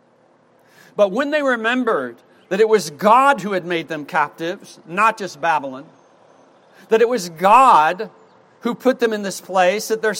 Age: 60-79